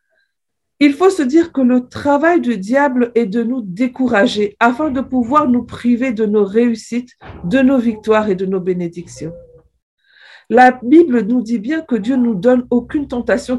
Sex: female